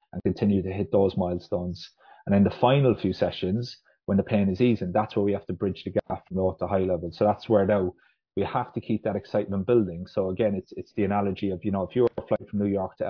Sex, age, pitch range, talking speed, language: male, 30-49, 95-110 Hz, 260 wpm, English